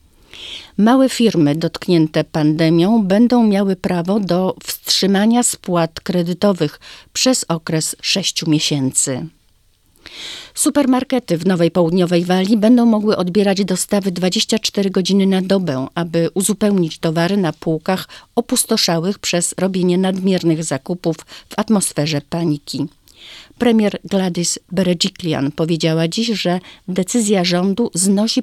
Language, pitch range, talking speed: Polish, 165-210 Hz, 105 wpm